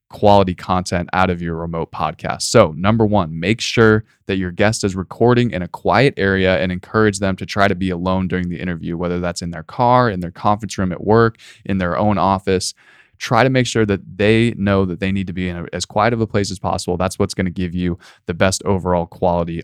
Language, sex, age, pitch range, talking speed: English, male, 20-39, 90-105 Hz, 235 wpm